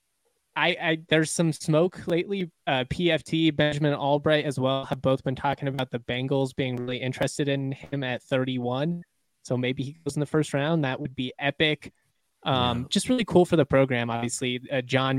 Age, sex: 20-39, male